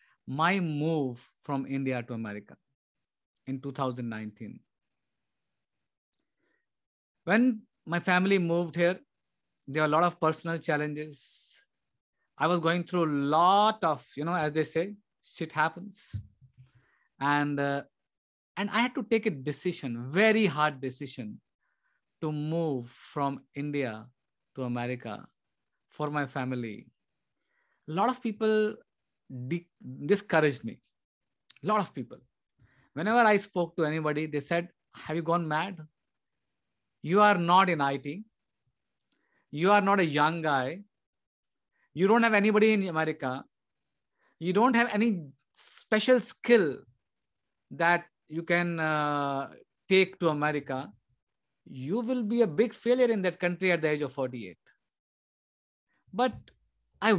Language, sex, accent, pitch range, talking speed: English, male, Indian, 135-190 Hz, 130 wpm